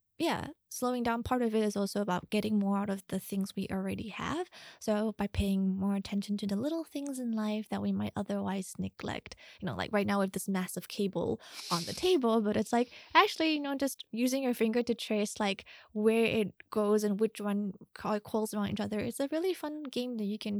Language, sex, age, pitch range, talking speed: English, female, 20-39, 195-240 Hz, 225 wpm